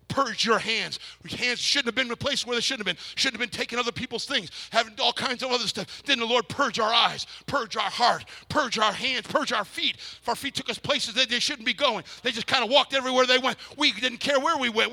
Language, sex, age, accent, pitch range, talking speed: English, male, 50-69, American, 190-255 Hz, 275 wpm